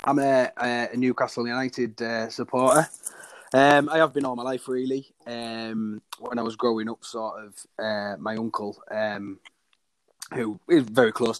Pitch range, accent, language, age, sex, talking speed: 110-125 Hz, British, English, 20-39, male, 165 wpm